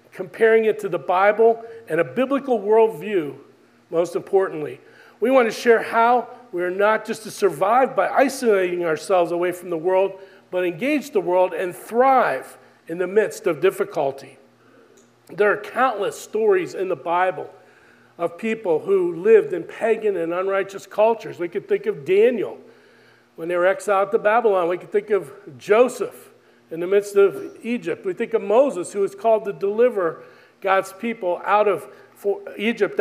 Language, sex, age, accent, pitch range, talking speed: English, male, 40-59, American, 190-235 Hz, 165 wpm